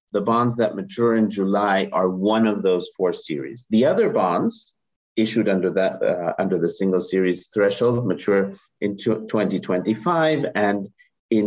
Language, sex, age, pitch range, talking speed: English, male, 50-69, 100-125 Hz, 150 wpm